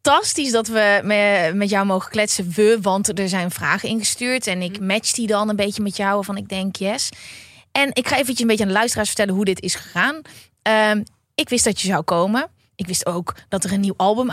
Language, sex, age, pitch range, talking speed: Dutch, female, 20-39, 200-260 Hz, 235 wpm